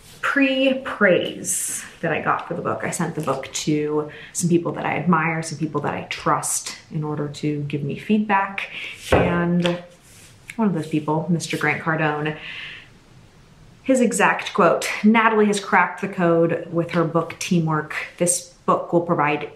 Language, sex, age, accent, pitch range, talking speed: English, female, 20-39, American, 155-180 Hz, 160 wpm